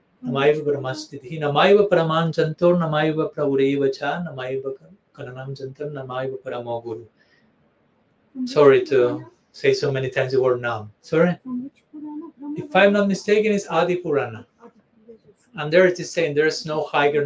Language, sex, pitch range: English, male, 135-210 Hz